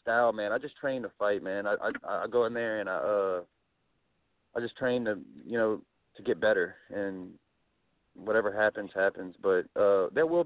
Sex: male